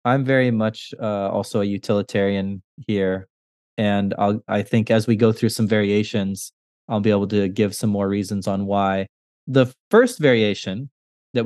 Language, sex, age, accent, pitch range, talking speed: English, male, 30-49, American, 105-135 Hz, 170 wpm